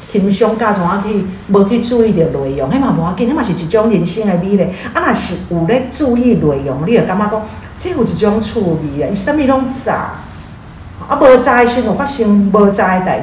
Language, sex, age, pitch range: Chinese, female, 50-69, 175-240 Hz